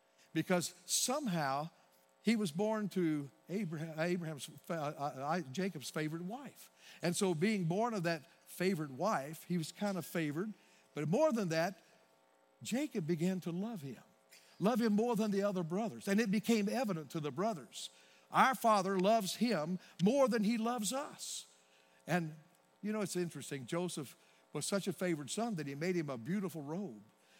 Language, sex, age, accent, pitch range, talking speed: English, male, 50-69, American, 145-190 Hz, 160 wpm